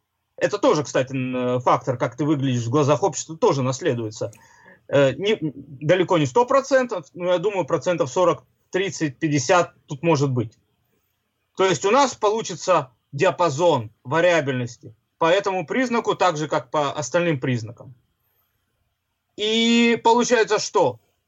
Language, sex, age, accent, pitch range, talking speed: Russian, male, 30-49, native, 135-195 Hz, 125 wpm